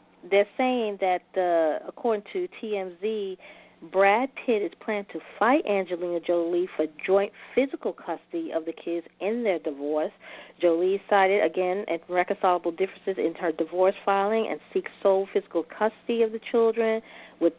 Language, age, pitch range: English, 40-59, 170-205 Hz